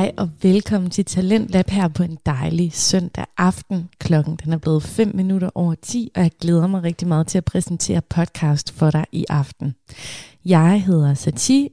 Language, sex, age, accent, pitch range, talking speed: Danish, female, 20-39, native, 165-215 Hz, 185 wpm